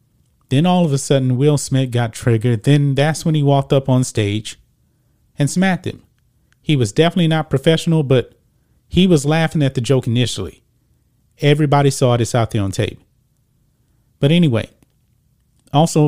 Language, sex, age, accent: English, male, 30-49, American